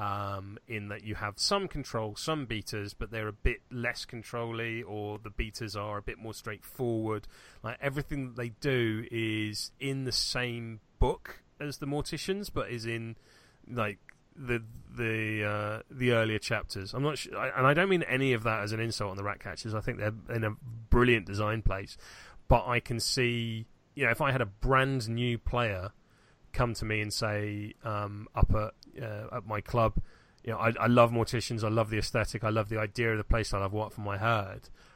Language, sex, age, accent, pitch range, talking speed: English, male, 30-49, British, 105-120 Hz, 205 wpm